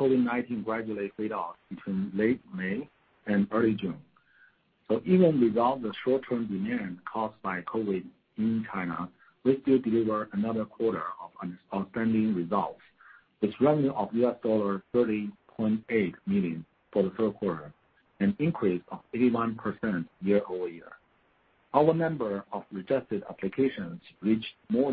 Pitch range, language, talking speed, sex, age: 105-130 Hz, English, 125 wpm, male, 50-69